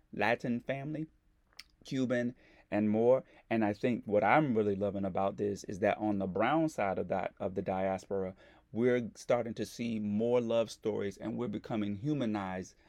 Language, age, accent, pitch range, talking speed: English, 30-49, American, 105-130 Hz, 165 wpm